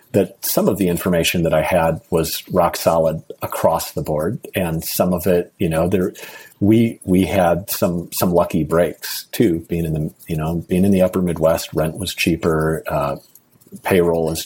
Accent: American